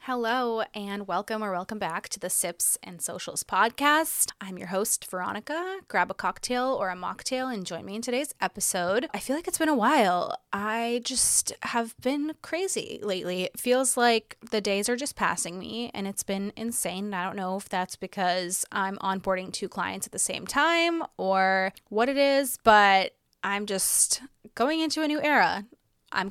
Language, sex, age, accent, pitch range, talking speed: English, female, 20-39, American, 190-255 Hz, 185 wpm